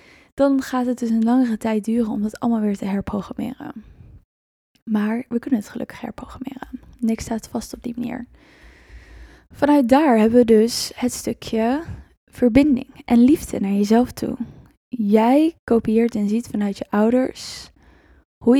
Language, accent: Dutch, Dutch